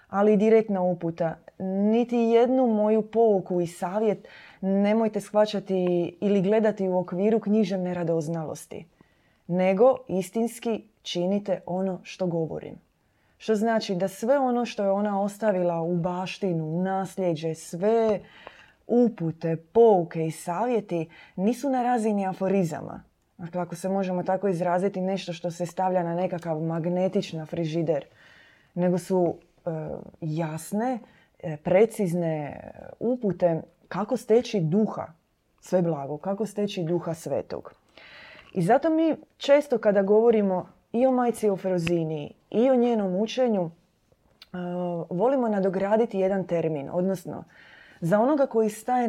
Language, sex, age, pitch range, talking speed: Croatian, female, 20-39, 175-220 Hz, 115 wpm